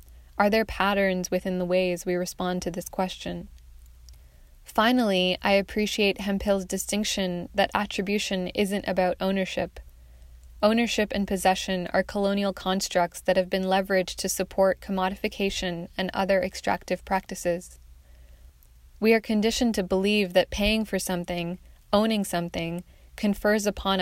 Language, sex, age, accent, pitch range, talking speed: English, female, 20-39, American, 175-195 Hz, 125 wpm